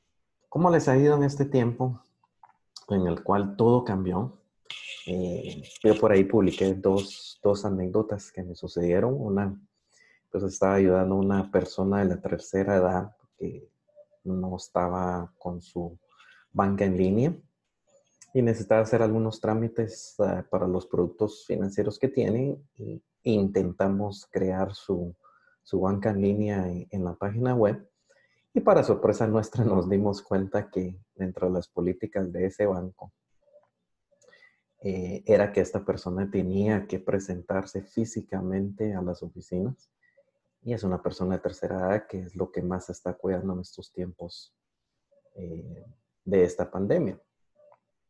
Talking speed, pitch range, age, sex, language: 140 wpm, 90-110 Hz, 30-49, male, Spanish